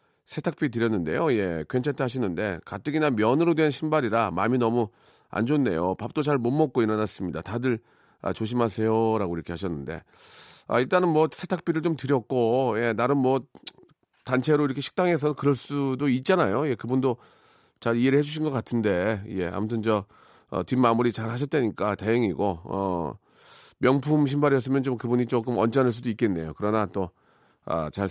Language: Korean